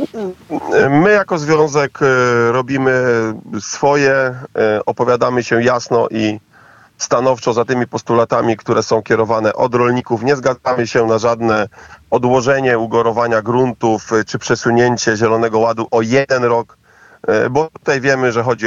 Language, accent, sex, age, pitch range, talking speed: Polish, native, male, 40-59, 110-130 Hz, 120 wpm